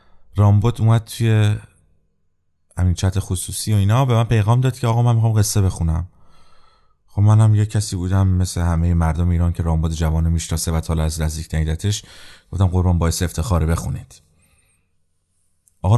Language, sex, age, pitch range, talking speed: Persian, male, 30-49, 80-100 Hz, 160 wpm